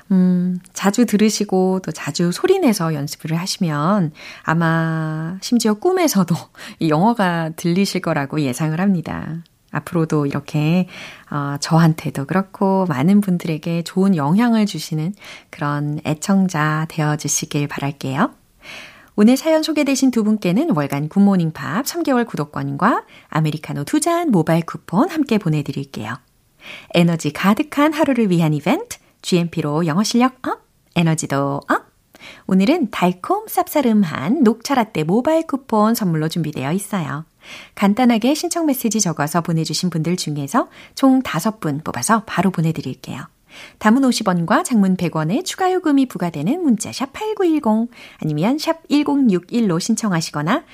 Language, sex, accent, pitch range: Korean, female, native, 155-240 Hz